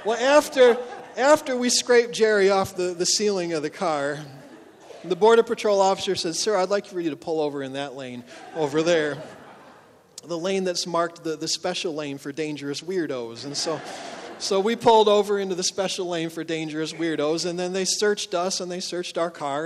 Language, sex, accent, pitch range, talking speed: English, male, American, 150-190 Hz, 200 wpm